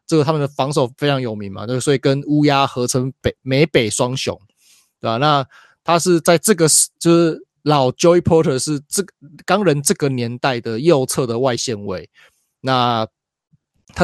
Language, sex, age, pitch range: Chinese, male, 20-39, 120-150 Hz